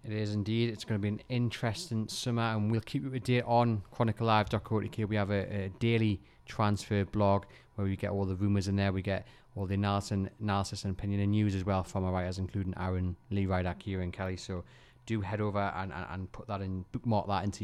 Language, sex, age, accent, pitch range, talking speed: English, male, 20-39, British, 100-120 Hz, 230 wpm